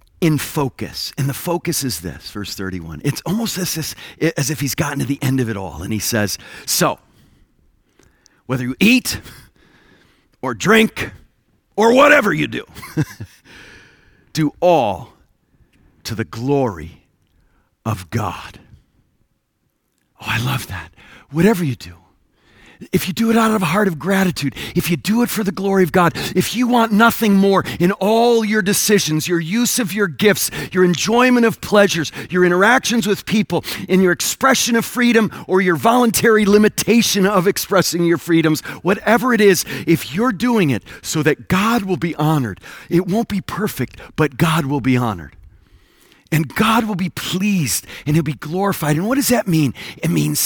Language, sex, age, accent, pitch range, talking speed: English, male, 40-59, American, 140-205 Hz, 170 wpm